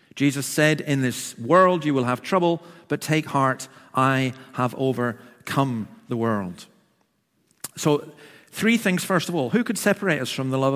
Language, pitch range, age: English, 130-165 Hz, 50-69